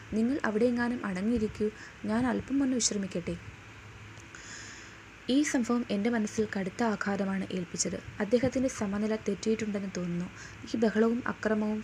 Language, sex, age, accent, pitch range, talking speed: Malayalam, female, 20-39, native, 190-235 Hz, 105 wpm